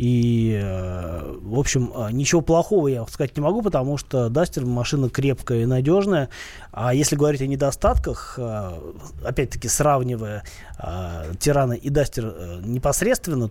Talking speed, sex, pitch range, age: 125 wpm, male, 110-140 Hz, 20-39